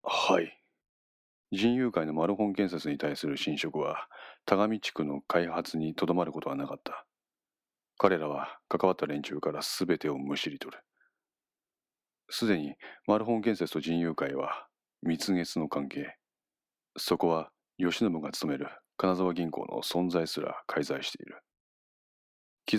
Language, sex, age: Japanese, male, 40-59